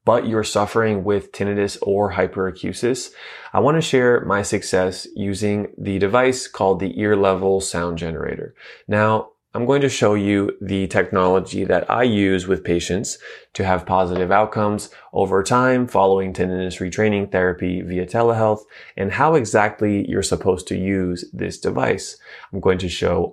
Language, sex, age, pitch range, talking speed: English, male, 20-39, 95-115 Hz, 150 wpm